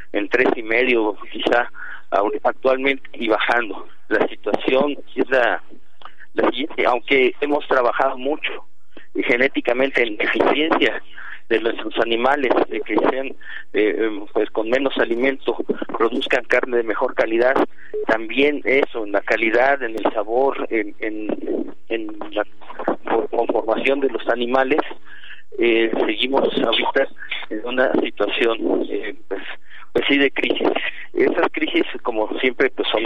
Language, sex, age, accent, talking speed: Spanish, male, 50-69, Mexican, 125 wpm